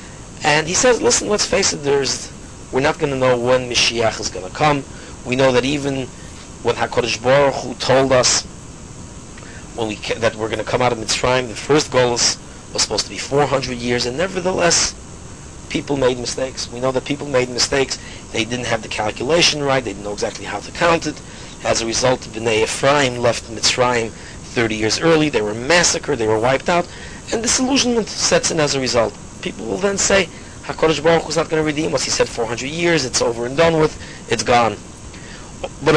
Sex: male